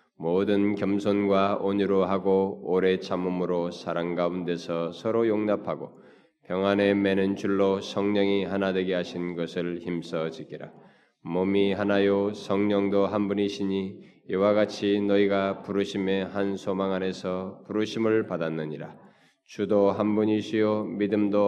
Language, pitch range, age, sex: Korean, 90-100 Hz, 20-39, male